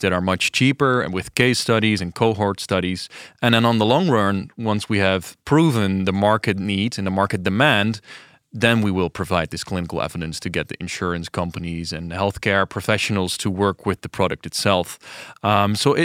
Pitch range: 95-120 Hz